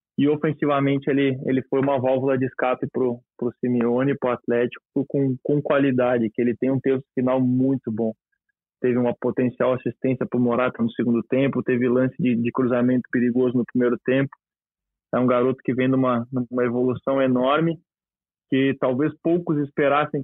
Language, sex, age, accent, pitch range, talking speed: Portuguese, male, 20-39, Brazilian, 125-145 Hz, 170 wpm